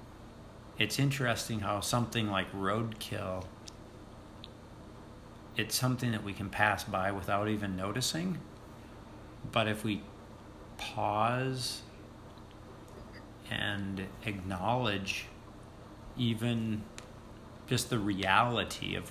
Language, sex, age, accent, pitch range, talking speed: English, male, 50-69, American, 100-115 Hz, 85 wpm